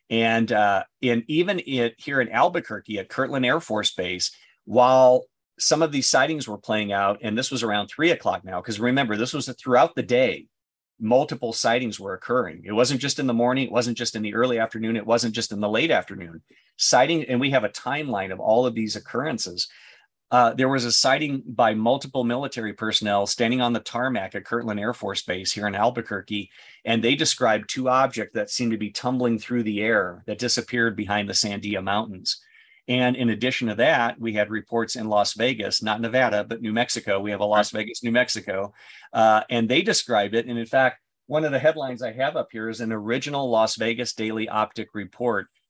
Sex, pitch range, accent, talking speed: male, 105-125 Hz, American, 205 wpm